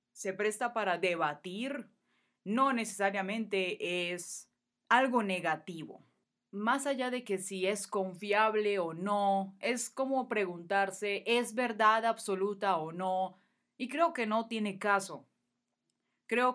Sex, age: female, 30-49